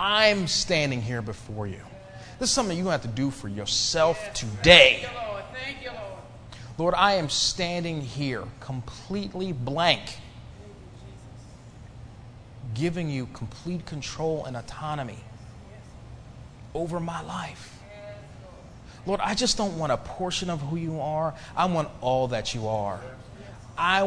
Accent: American